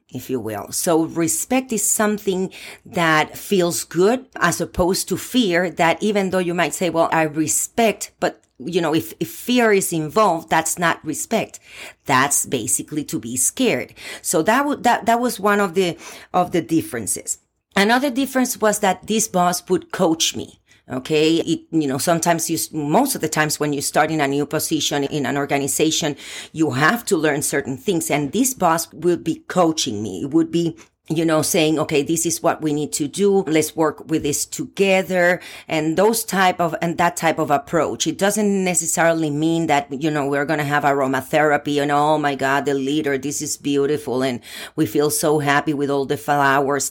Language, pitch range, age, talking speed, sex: English, 145-185 Hz, 40-59, 190 wpm, female